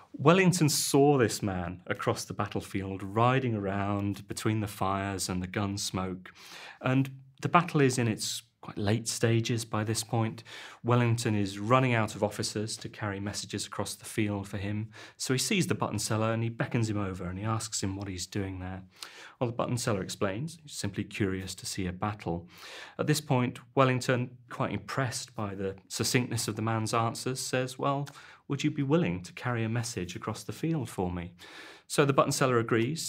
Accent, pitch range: British, 105-130 Hz